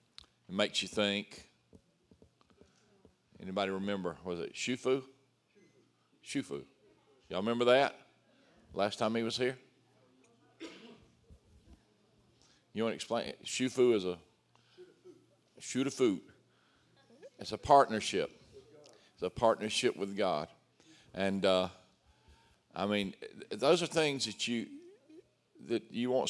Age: 50-69